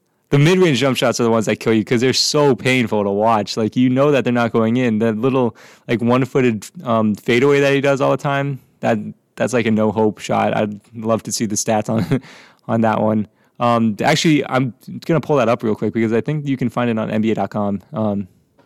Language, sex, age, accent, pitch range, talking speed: English, male, 20-39, American, 110-135 Hz, 230 wpm